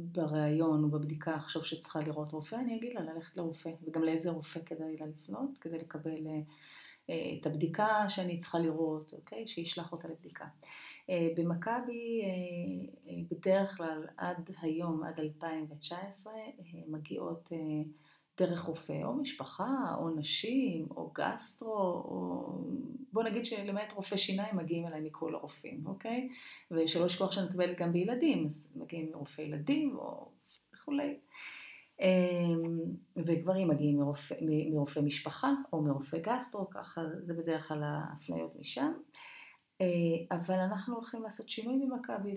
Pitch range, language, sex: 160-200 Hz, Hebrew, female